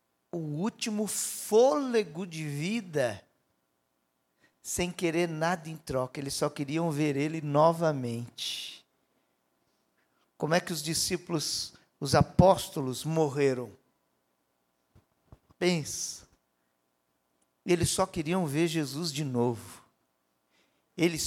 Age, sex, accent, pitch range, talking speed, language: 50-69, male, Brazilian, 115-185 Hz, 95 wpm, Portuguese